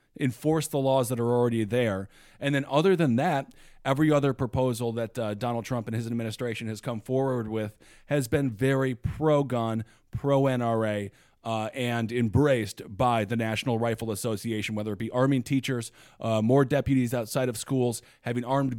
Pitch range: 115-140 Hz